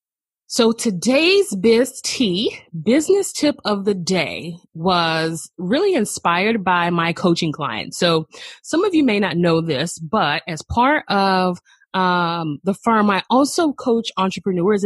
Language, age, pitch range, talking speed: English, 20-39, 175-245 Hz, 140 wpm